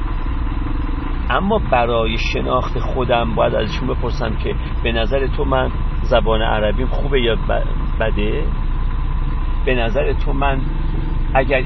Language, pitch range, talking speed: Persian, 70-100 Hz, 115 wpm